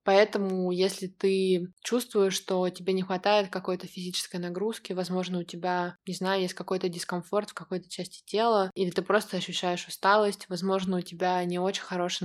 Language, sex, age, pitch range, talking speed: Russian, female, 20-39, 175-195 Hz, 165 wpm